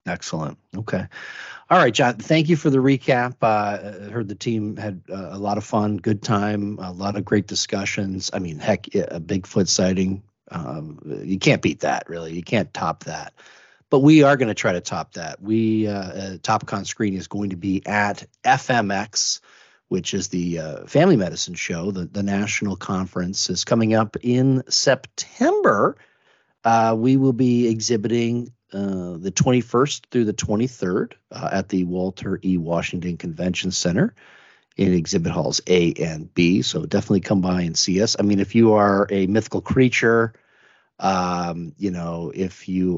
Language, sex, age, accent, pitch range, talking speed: English, male, 40-59, American, 90-115 Hz, 175 wpm